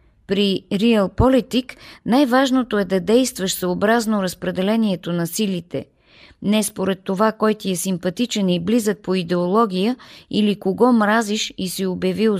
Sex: female